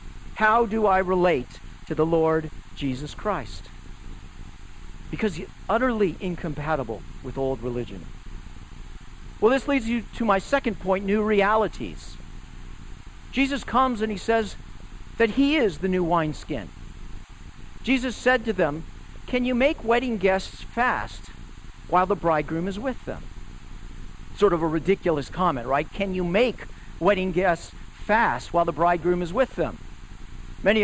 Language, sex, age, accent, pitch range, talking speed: English, male, 50-69, American, 145-225 Hz, 140 wpm